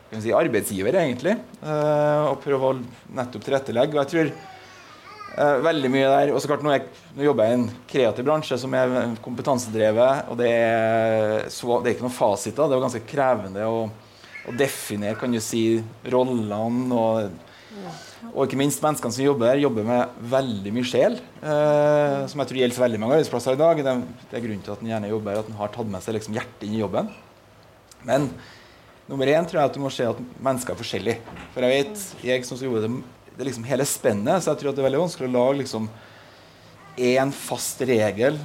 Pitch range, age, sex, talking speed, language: 115-150 Hz, 20-39, male, 225 wpm, English